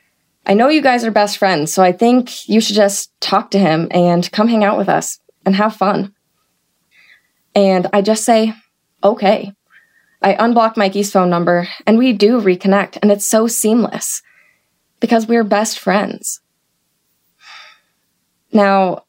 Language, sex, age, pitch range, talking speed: English, female, 20-39, 195-220 Hz, 150 wpm